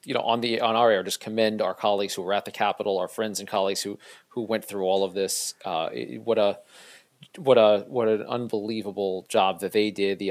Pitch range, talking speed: 100-120 Hz, 235 wpm